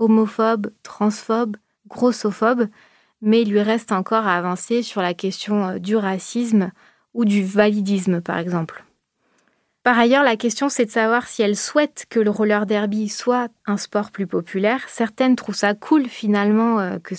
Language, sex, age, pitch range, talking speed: French, female, 30-49, 190-230 Hz, 155 wpm